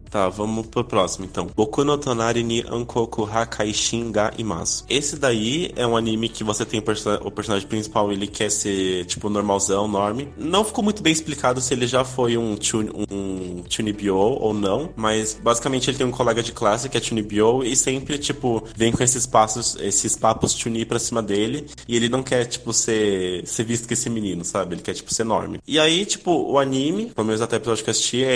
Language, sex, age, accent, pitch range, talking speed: Portuguese, male, 20-39, Brazilian, 105-125 Hz, 205 wpm